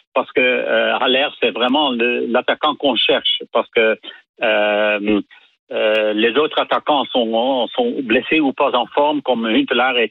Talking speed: 160 wpm